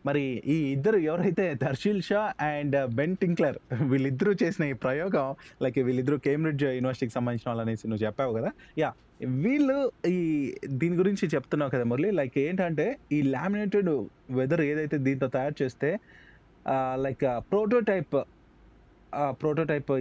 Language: Telugu